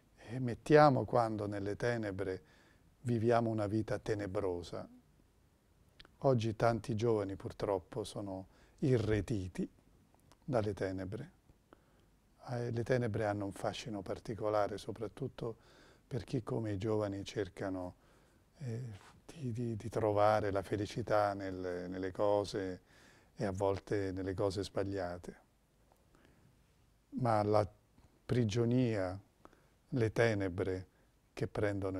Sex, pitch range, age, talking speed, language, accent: male, 95-115 Hz, 40-59, 100 wpm, Italian, native